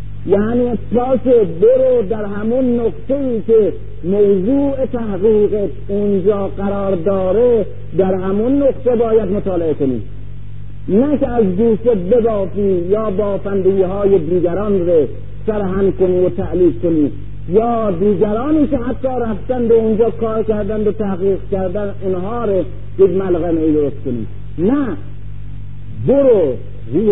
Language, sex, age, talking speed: Persian, male, 50-69, 120 wpm